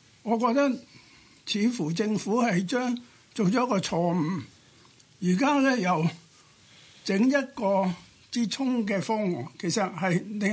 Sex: male